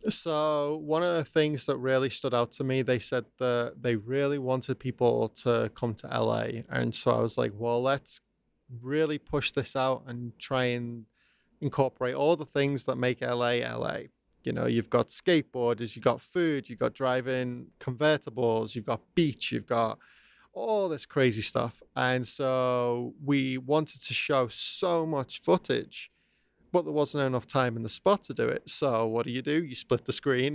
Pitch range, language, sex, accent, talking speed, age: 125-150 Hz, English, male, British, 185 wpm, 20-39